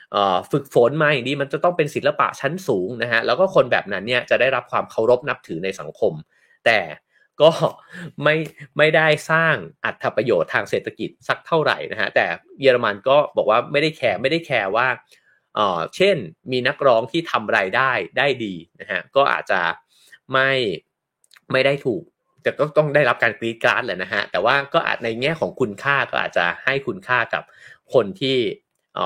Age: 30-49